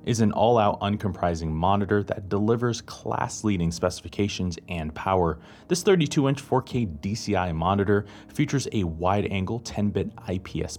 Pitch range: 90-115 Hz